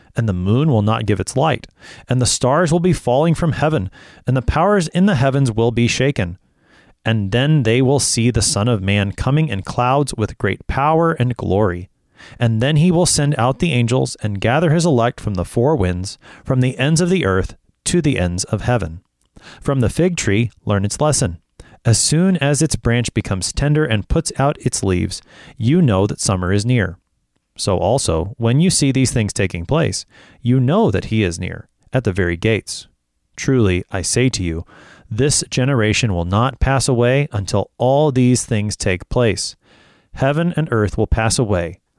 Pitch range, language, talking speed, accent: 100-140 Hz, English, 195 wpm, American